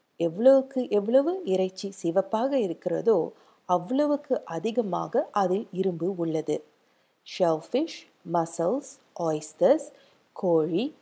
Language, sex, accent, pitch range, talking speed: Tamil, female, native, 175-265 Hz, 75 wpm